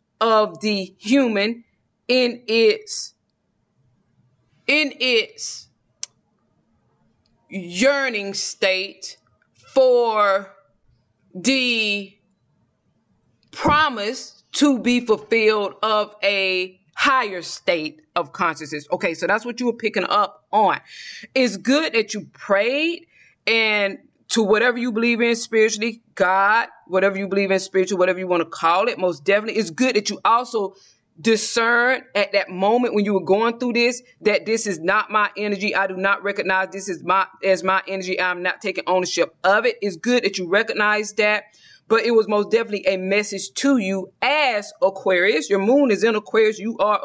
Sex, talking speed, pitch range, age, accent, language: female, 150 wpm, 195-235 Hz, 20-39, American, English